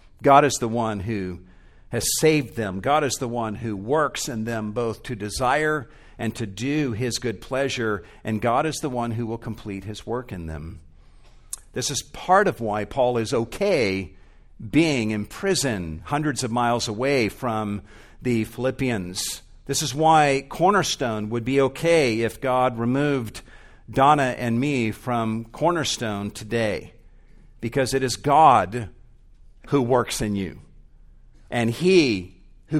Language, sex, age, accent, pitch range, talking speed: English, male, 50-69, American, 105-130 Hz, 150 wpm